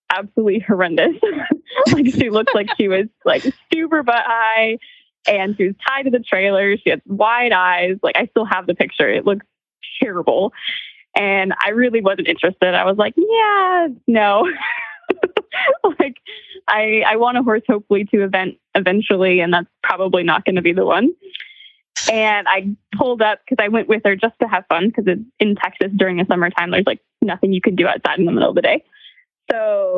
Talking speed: 185 wpm